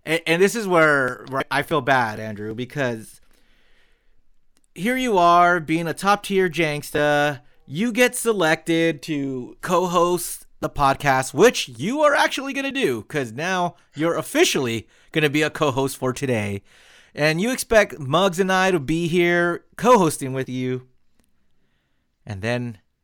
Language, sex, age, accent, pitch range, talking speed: English, male, 30-49, American, 120-170 Hz, 150 wpm